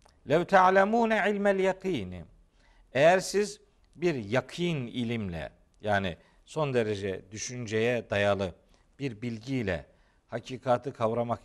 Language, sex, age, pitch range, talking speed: Turkish, male, 50-69, 110-175 Hz, 95 wpm